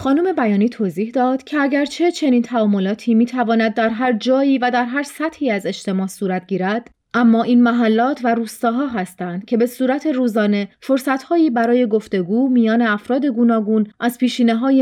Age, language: 30-49, Persian